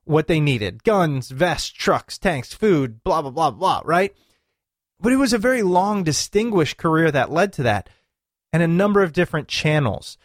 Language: English